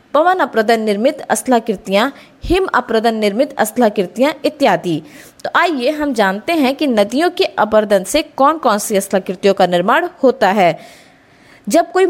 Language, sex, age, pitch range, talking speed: Hindi, female, 20-39, 210-300 Hz, 65 wpm